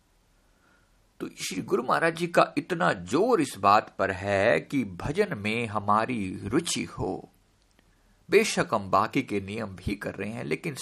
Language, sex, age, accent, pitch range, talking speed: Hindi, male, 50-69, native, 95-135 Hz, 155 wpm